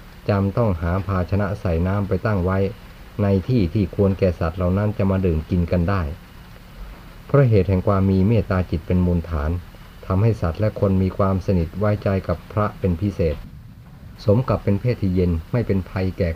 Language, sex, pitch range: Thai, male, 90-100 Hz